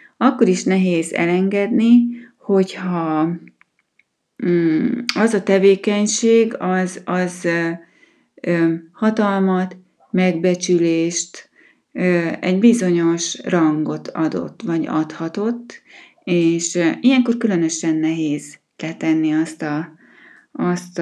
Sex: female